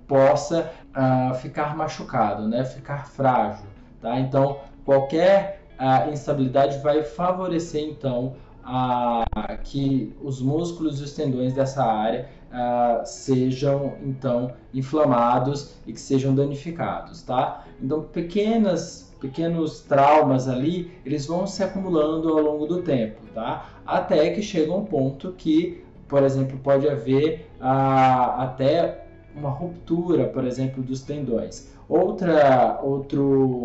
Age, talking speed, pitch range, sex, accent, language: 20-39, 110 wpm, 130-155 Hz, male, Brazilian, Portuguese